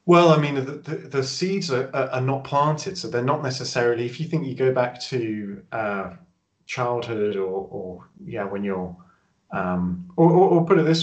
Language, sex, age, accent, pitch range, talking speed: English, male, 30-49, British, 100-125 Hz, 185 wpm